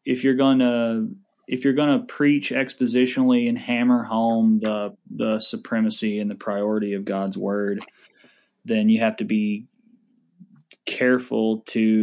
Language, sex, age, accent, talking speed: English, male, 20-39, American, 145 wpm